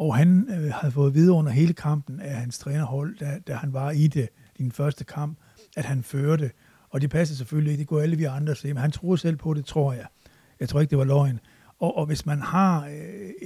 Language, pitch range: Danish, 140-155 Hz